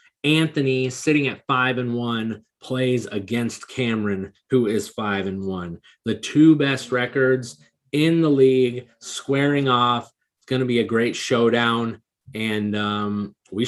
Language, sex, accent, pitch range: English, male, American, 115-135 Hz